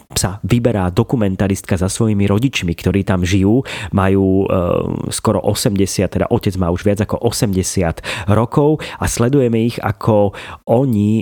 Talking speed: 135 wpm